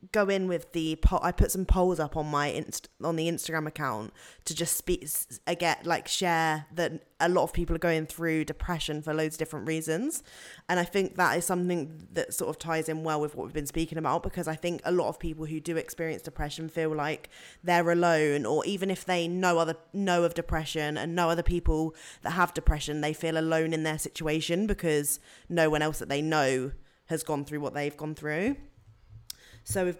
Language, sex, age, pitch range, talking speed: English, female, 20-39, 155-170 Hz, 215 wpm